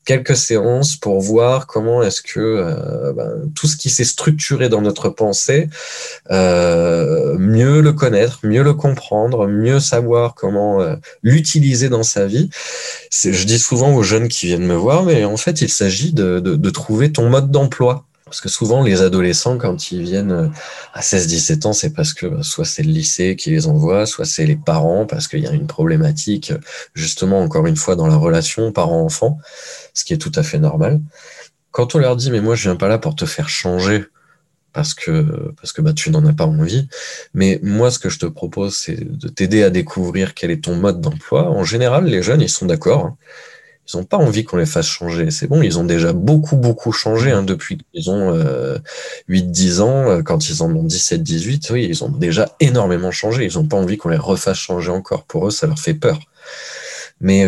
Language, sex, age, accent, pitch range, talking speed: French, male, 20-39, French, 105-155 Hz, 210 wpm